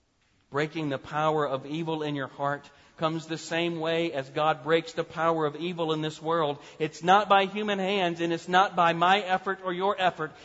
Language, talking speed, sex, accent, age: English, 205 wpm, male, American, 40-59